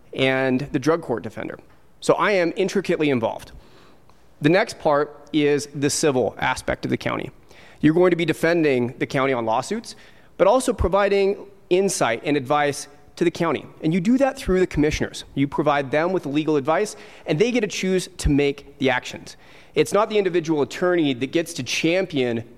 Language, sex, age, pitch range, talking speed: English, male, 30-49, 140-190 Hz, 185 wpm